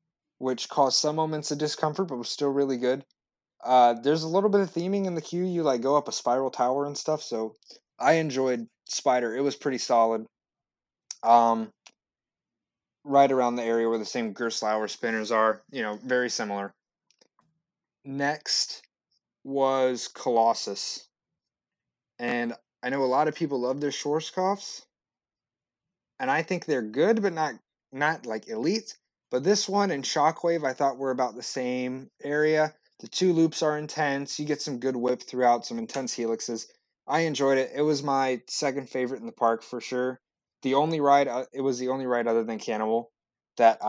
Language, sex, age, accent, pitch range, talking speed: English, male, 30-49, American, 120-155 Hz, 175 wpm